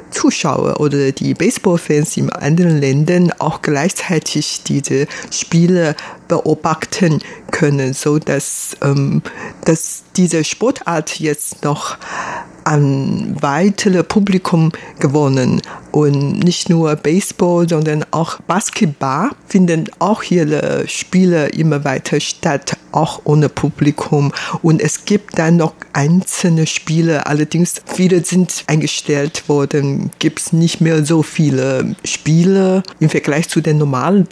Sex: female